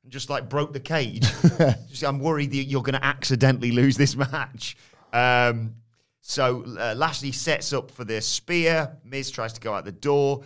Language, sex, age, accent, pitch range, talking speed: English, male, 30-49, British, 110-135 Hz, 190 wpm